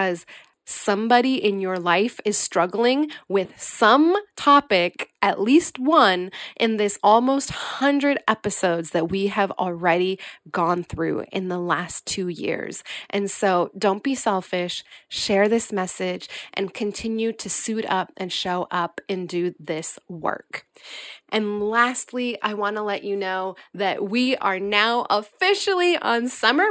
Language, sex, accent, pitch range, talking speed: English, female, American, 195-245 Hz, 140 wpm